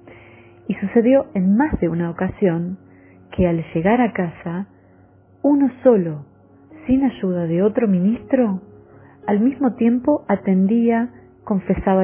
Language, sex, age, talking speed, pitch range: Spanish, female, 30-49, 120 wpm, 155-205 Hz